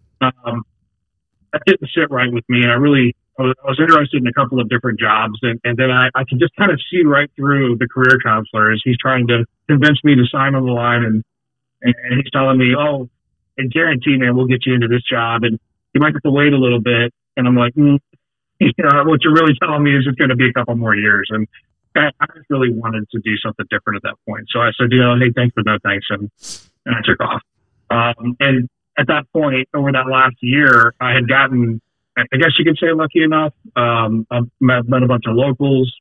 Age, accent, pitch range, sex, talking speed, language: 30-49, American, 115-140 Hz, male, 245 wpm, English